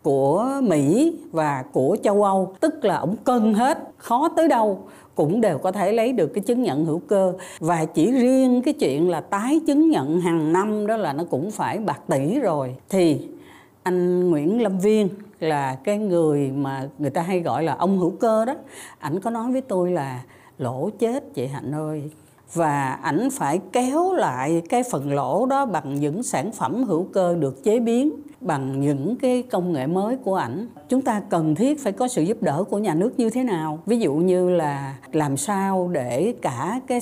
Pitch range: 150-235 Hz